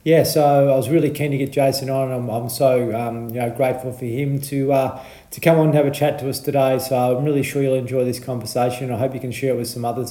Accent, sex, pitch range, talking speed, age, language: Australian, male, 130-150 Hz, 285 wpm, 40-59, English